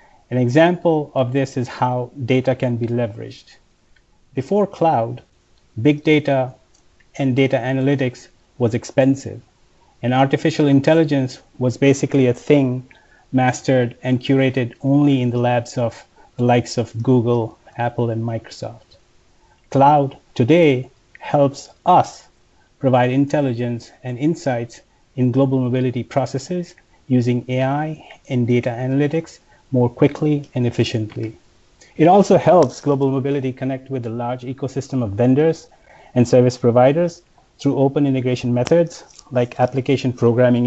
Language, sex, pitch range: English, male, 120-140 Hz